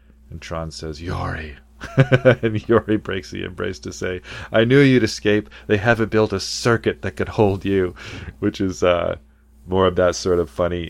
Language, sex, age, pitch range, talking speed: English, male, 30-49, 80-105 Hz, 180 wpm